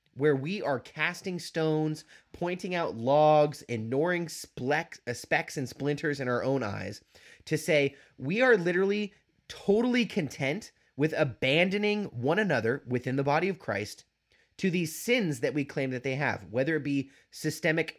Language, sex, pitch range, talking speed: English, male, 130-170 Hz, 150 wpm